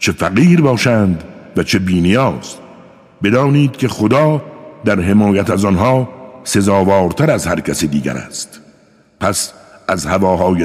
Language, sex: Persian, male